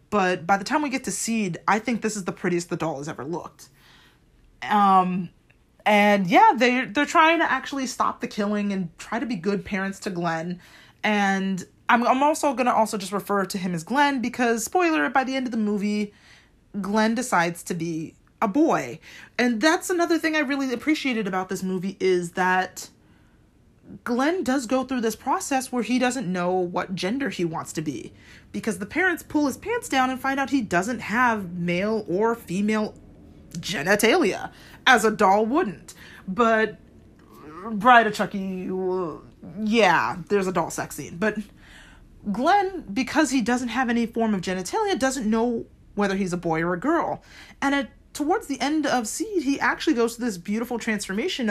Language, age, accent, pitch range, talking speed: English, 30-49, American, 190-260 Hz, 180 wpm